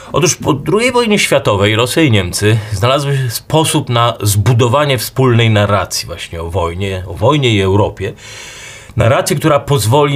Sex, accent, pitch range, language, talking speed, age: male, native, 105-125 Hz, Polish, 150 wpm, 40-59